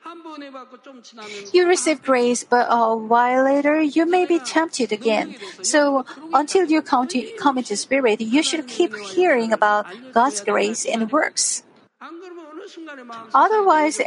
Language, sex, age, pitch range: Korean, female, 50-69, 230-300 Hz